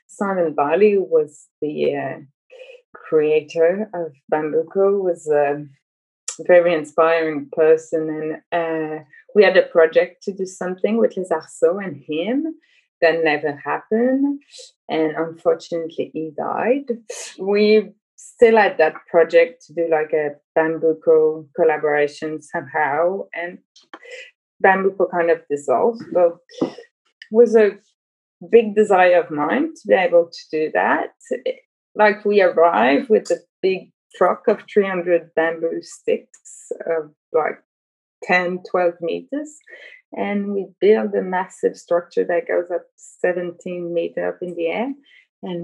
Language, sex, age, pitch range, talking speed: English, female, 20-39, 165-255 Hz, 125 wpm